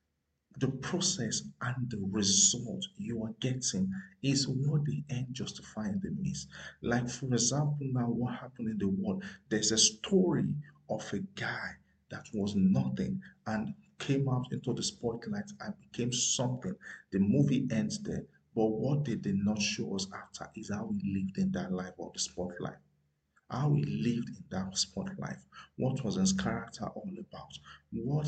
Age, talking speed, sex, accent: 50-69, 170 wpm, male, Nigerian